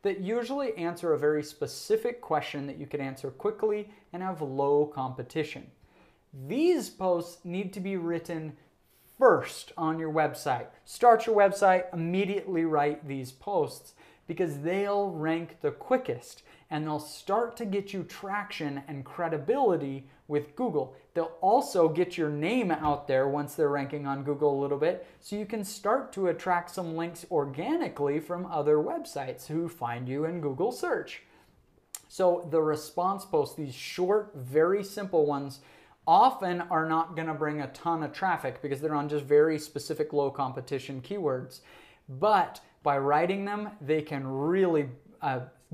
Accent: American